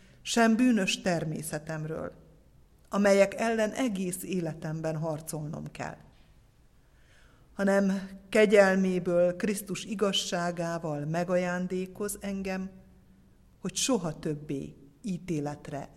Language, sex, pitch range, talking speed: Hungarian, female, 175-200 Hz, 70 wpm